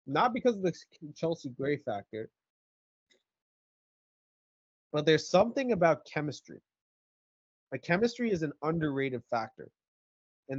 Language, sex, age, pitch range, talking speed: English, male, 20-39, 125-170 Hz, 100 wpm